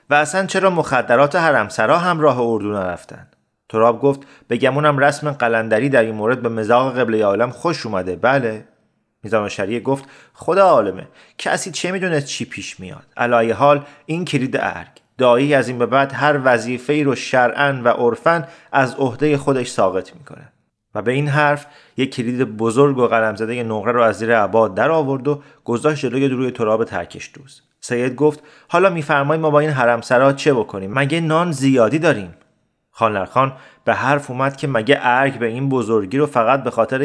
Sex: male